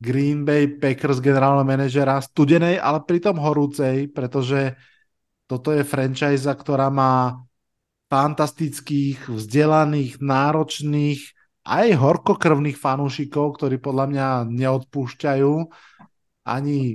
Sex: male